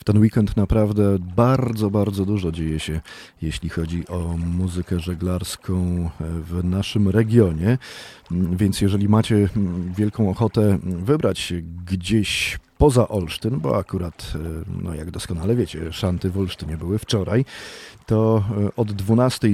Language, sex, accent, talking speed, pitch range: Polish, male, native, 125 wpm, 90-110 Hz